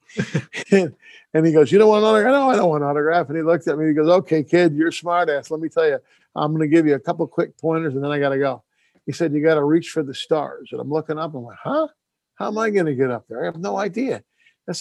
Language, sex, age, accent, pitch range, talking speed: English, male, 50-69, American, 140-175 Hz, 290 wpm